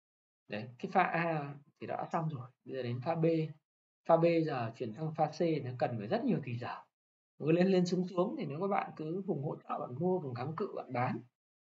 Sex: male